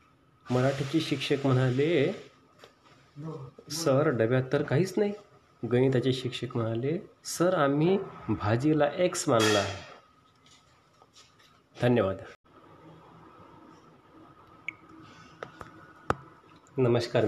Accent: native